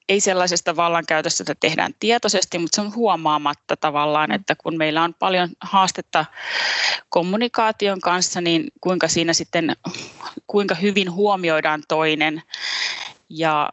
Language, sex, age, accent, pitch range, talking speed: Finnish, female, 30-49, native, 160-190 Hz, 120 wpm